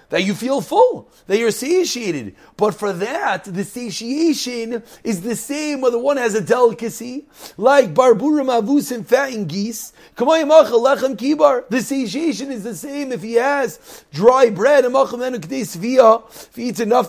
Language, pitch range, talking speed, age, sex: English, 180-245 Hz, 140 wpm, 30-49, male